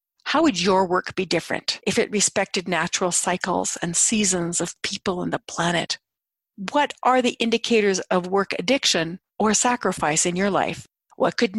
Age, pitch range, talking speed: 50-69, 165-215 Hz, 165 wpm